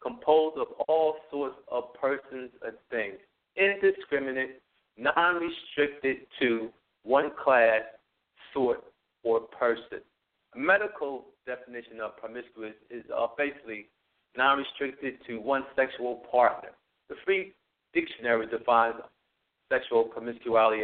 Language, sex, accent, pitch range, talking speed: English, male, American, 120-165 Hz, 105 wpm